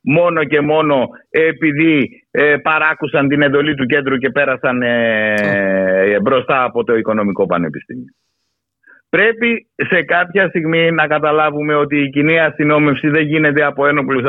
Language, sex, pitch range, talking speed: Greek, male, 145-195 Hz, 140 wpm